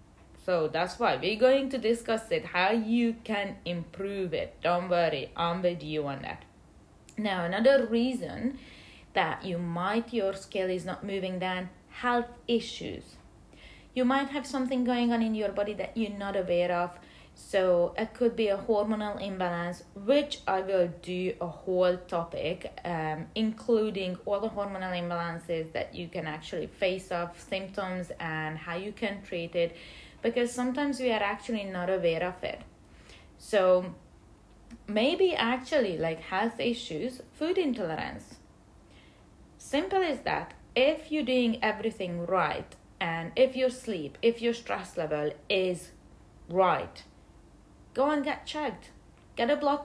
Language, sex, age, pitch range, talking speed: English, female, 30-49, 175-245 Hz, 150 wpm